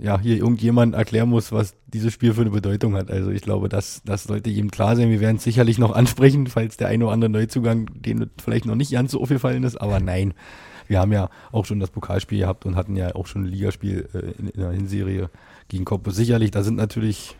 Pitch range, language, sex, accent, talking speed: 105-120 Hz, German, male, German, 235 wpm